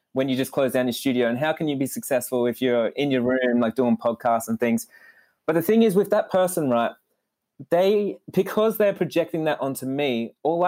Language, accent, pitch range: English, Australian, 130-170 Hz